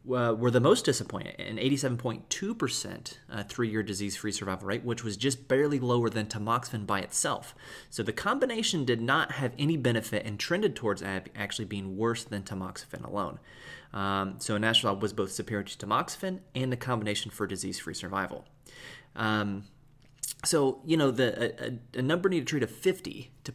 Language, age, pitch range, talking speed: English, 30-49, 105-130 Hz, 170 wpm